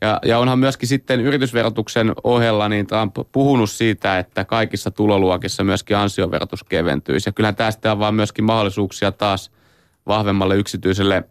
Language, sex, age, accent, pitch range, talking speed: Finnish, male, 30-49, native, 95-120 Hz, 145 wpm